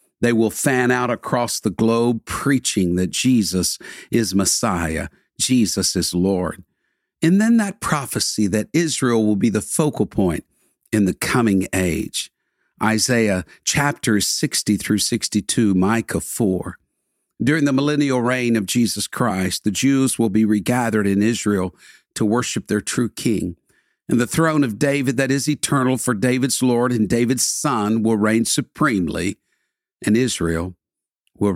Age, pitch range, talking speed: 50-69, 100-135 Hz, 145 wpm